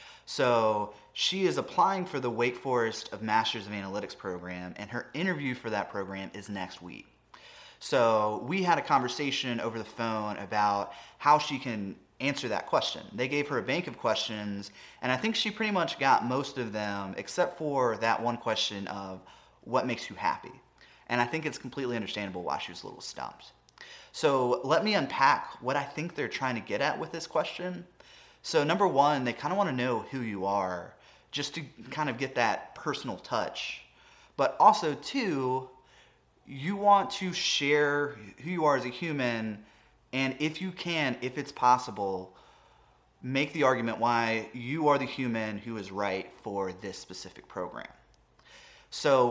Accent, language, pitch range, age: American, English, 105-145 Hz, 30-49